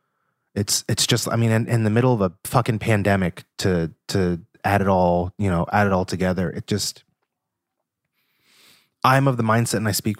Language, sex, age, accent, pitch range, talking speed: English, male, 20-39, American, 95-110 Hz, 195 wpm